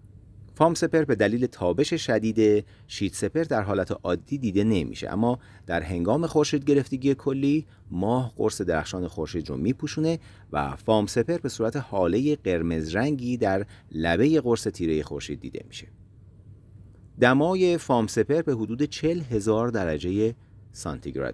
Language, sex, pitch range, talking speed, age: Persian, male, 95-130 Hz, 140 wpm, 40-59